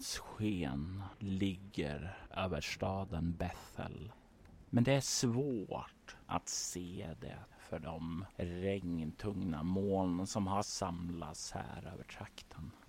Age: 30-49